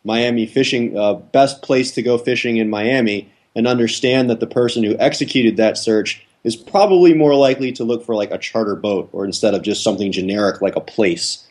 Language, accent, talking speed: English, American, 205 wpm